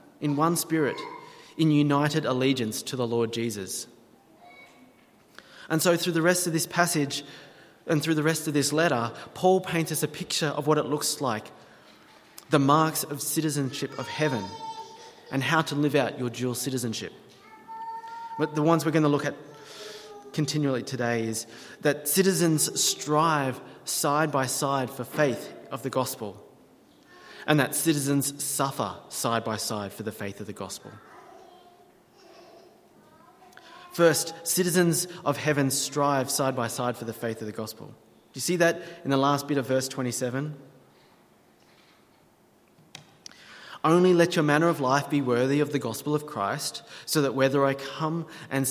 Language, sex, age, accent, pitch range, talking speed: English, male, 20-39, Australian, 130-165 Hz, 160 wpm